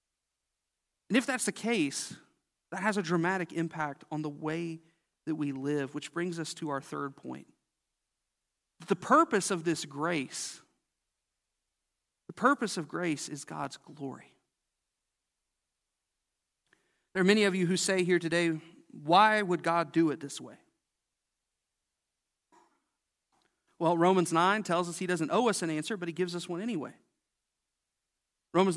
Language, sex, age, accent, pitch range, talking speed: English, male, 40-59, American, 160-195 Hz, 145 wpm